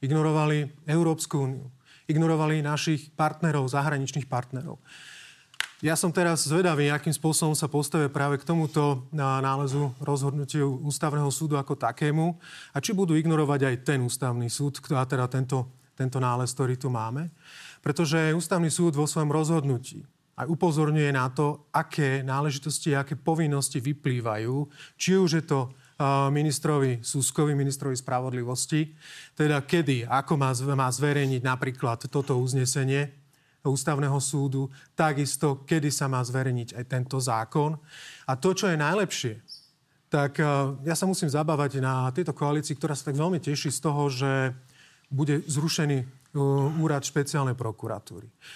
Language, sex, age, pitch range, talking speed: Slovak, male, 30-49, 135-155 Hz, 135 wpm